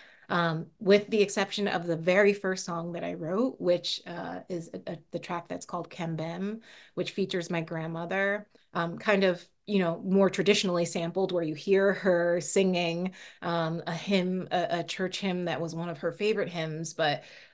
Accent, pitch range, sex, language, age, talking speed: American, 160-185 Hz, female, English, 30-49, 185 wpm